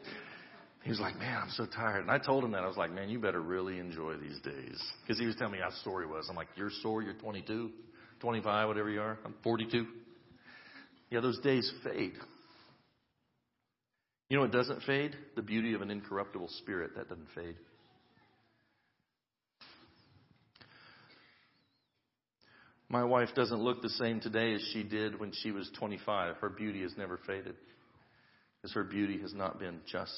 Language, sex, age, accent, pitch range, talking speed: English, male, 40-59, American, 110-155 Hz, 170 wpm